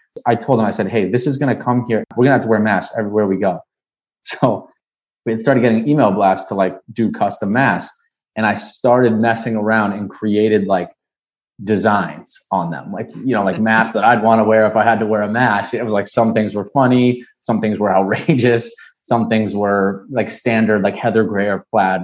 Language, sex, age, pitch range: English, male, 30-49, 100-120 Hz